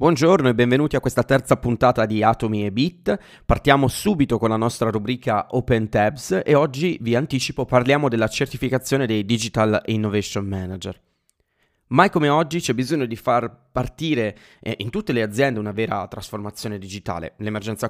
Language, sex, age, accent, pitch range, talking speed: Italian, male, 30-49, native, 100-115 Hz, 160 wpm